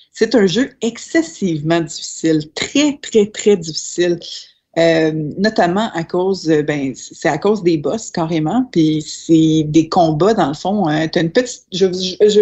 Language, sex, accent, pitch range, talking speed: French, female, Canadian, 160-225 Hz, 155 wpm